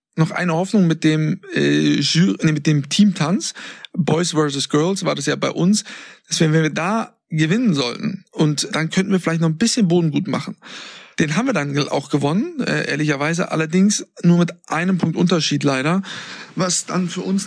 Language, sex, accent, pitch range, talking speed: German, male, German, 145-185 Hz, 190 wpm